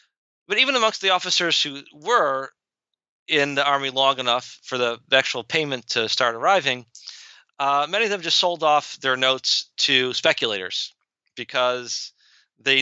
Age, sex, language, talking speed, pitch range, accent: 40-59, male, English, 150 wpm, 120-150 Hz, American